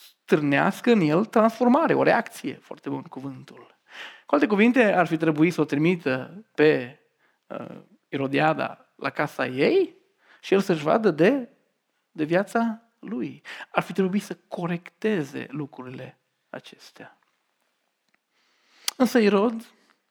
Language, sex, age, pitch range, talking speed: Romanian, male, 40-59, 145-210 Hz, 120 wpm